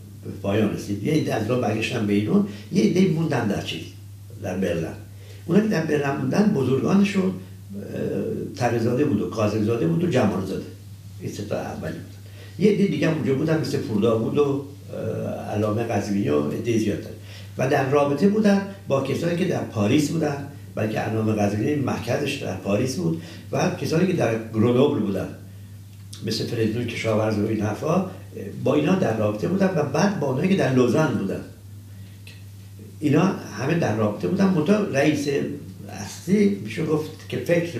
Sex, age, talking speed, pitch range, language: male, 60-79, 155 wpm, 100-150 Hz, Persian